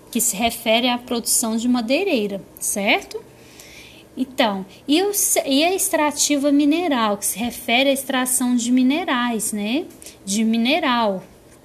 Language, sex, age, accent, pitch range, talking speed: Portuguese, female, 10-29, Brazilian, 220-280 Hz, 125 wpm